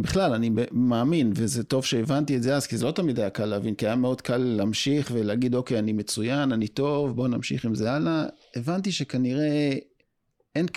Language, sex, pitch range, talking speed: Hebrew, male, 110-140 Hz, 195 wpm